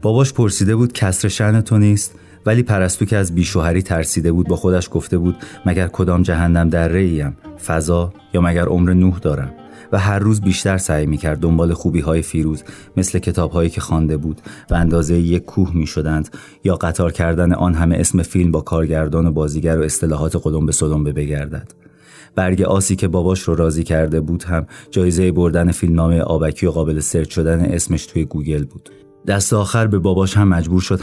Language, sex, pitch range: Persian, male, 80-95 Hz